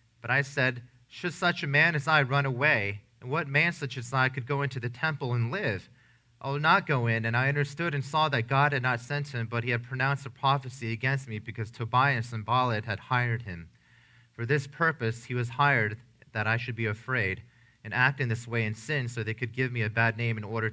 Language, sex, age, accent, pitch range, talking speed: English, male, 30-49, American, 115-130 Hz, 240 wpm